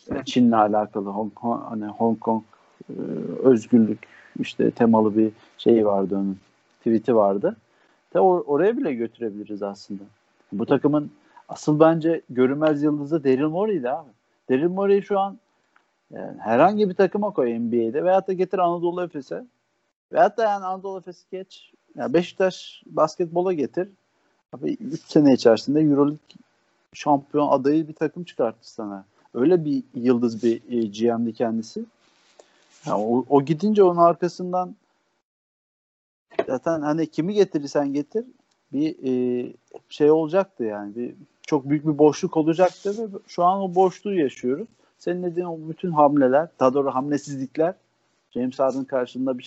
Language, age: Turkish, 50-69